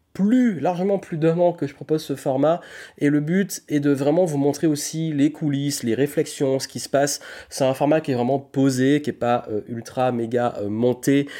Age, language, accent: 30-49, French, French